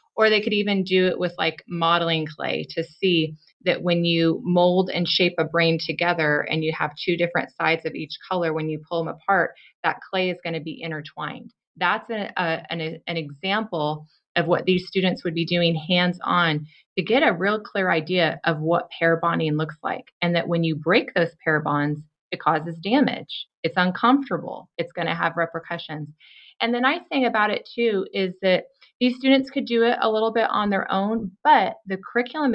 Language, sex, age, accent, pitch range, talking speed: English, female, 30-49, American, 165-205 Hz, 200 wpm